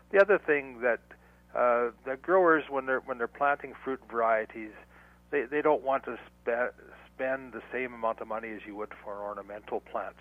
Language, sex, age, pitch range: English, male, 60-79, 105-135 Hz